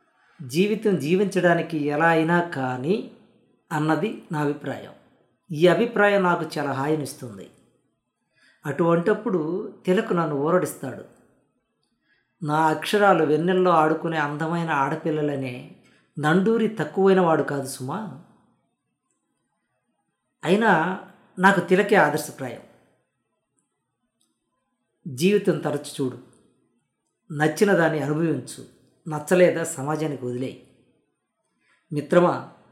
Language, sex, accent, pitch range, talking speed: Telugu, female, native, 140-175 Hz, 75 wpm